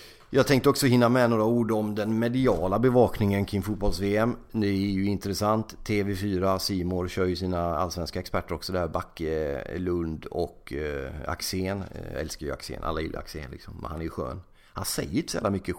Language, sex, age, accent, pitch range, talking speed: English, male, 30-49, Swedish, 85-105 Hz, 180 wpm